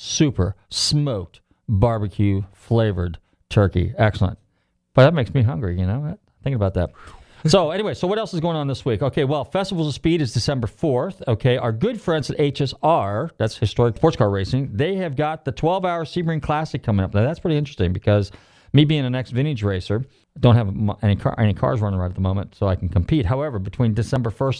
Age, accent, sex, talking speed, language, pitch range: 40-59, American, male, 200 wpm, English, 105-140 Hz